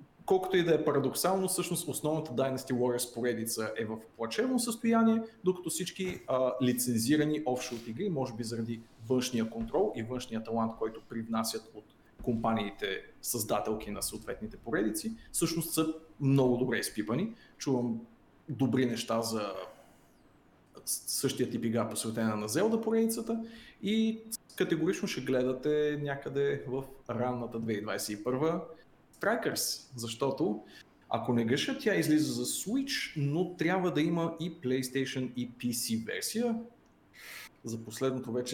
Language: Bulgarian